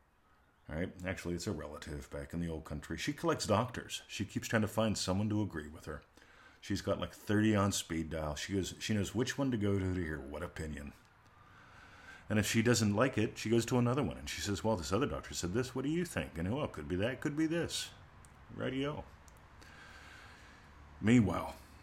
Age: 50-69